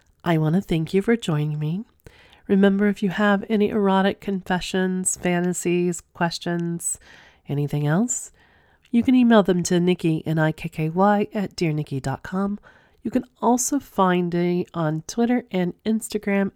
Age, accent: 30-49, American